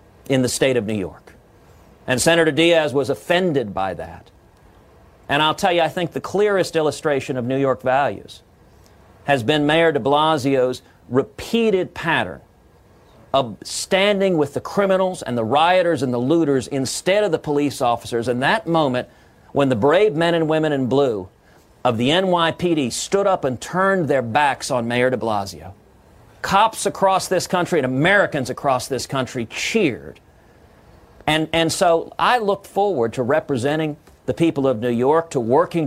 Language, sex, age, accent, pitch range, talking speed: English, male, 40-59, American, 125-170 Hz, 165 wpm